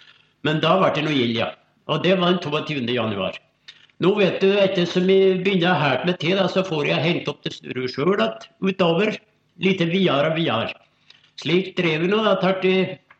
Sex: male